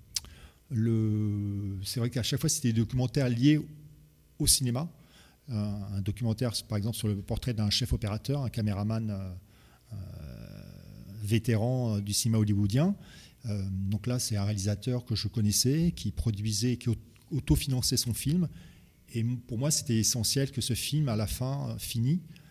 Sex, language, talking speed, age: male, French, 145 wpm, 40-59